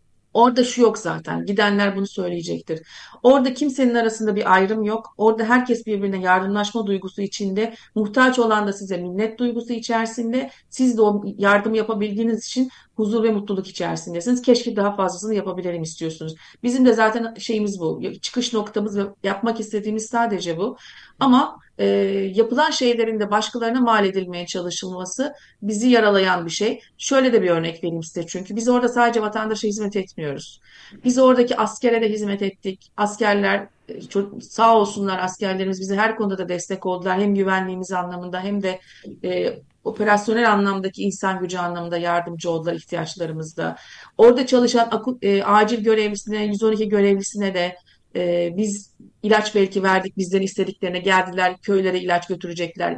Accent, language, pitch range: native, Turkish, 190-230 Hz